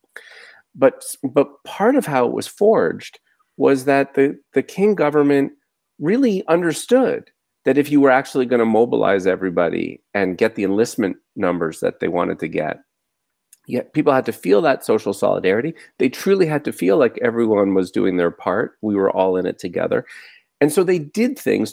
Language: English